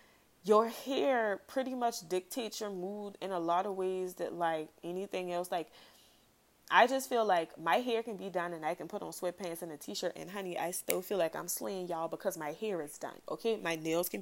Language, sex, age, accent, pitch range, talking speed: English, female, 20-39, American, 170-215 Hz, 225 wpm